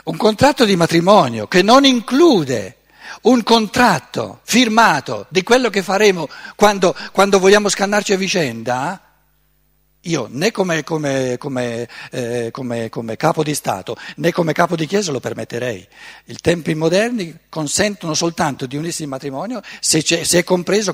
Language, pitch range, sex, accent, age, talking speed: Italian, 135-175 Hz, male, native, 60-79, 145 wpm